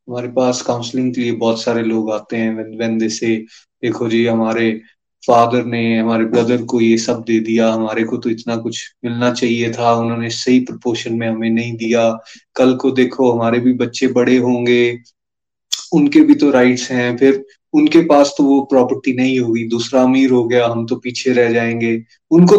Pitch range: 115-135 Hz